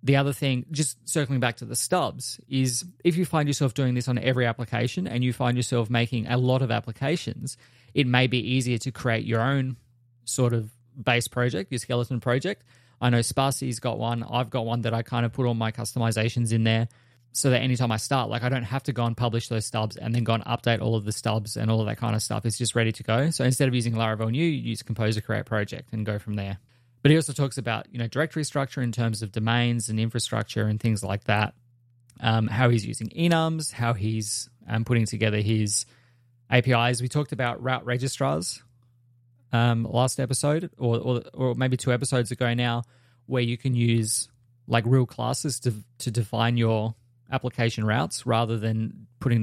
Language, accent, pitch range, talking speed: English, Australian, 115-125 Hz, 215 wpm